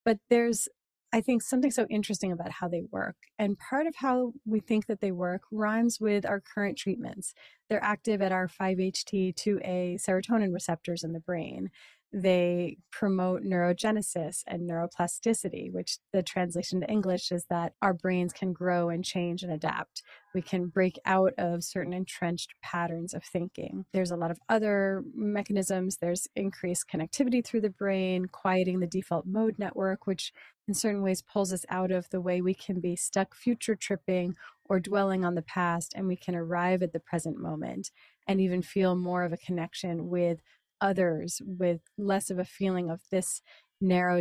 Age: 30-49